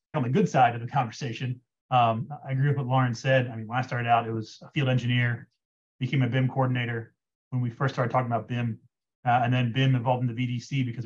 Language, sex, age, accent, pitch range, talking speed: English, male, 30-49, American, 120-140 Hz, 240 wpm